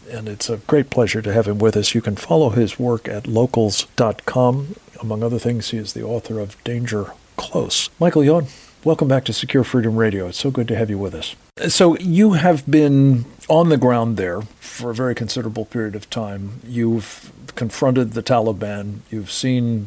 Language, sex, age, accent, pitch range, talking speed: English, male, 50-69, American, 110-125 Hz, 195 wpm